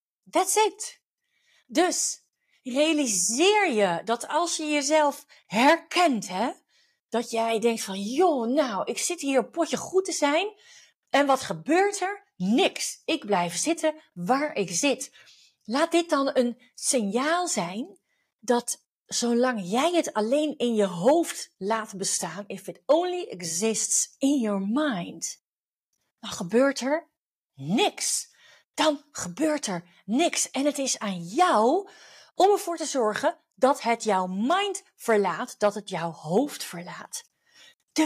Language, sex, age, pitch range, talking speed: Dutch, female, 40-59, 205-310 Hz, 135 wpm